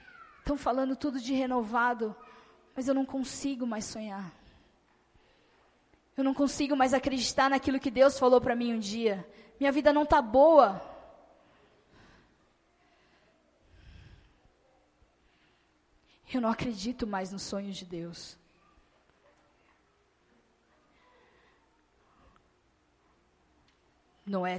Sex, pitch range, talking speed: female, 185-260 Hz, 95 wpm